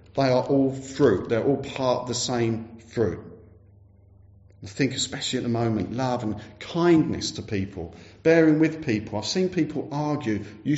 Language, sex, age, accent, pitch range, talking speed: English, male, 40-59, British, 105-135 Hz, 165 wpm